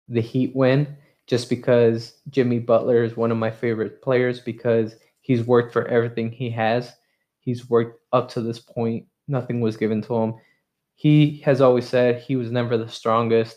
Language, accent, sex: English, American, male